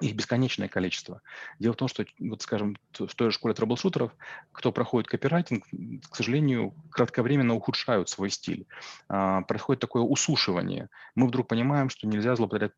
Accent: native